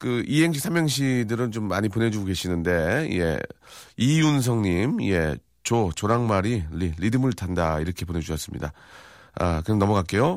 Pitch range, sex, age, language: 90-130 Hz, male, 40-59, Korean